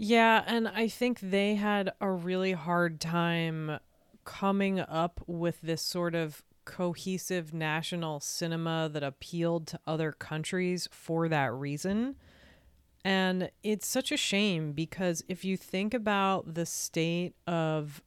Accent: American